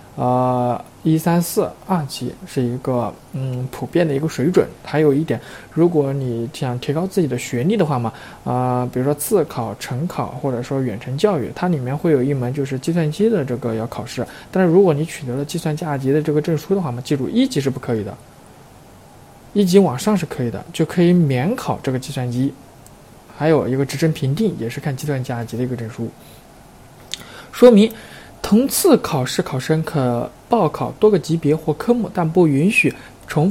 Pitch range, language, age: 130-175 Hz, Chinese, 20-39